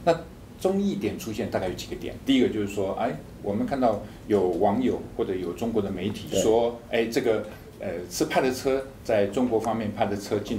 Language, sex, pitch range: Chinese, male, 100-125 Hz